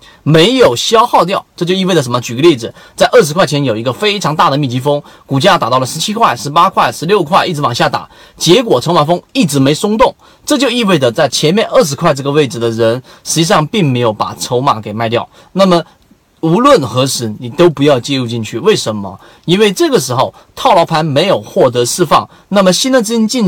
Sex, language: male, Chinese